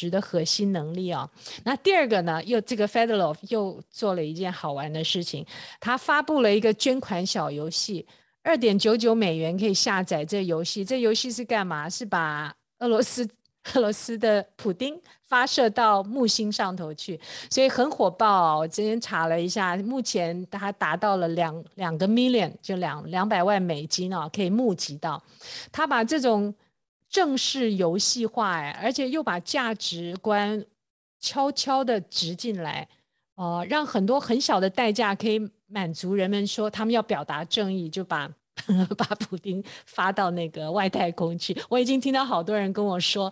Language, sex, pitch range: Chinese, female, 180-235 Hz